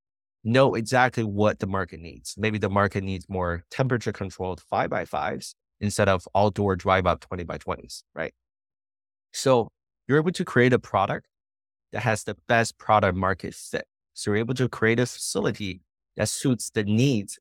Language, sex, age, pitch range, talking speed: English, male, 30-49, 95-115 Hz, 160 wpm